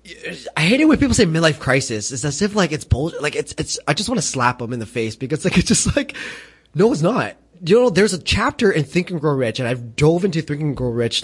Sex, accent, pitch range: male, American, 115-150 Hz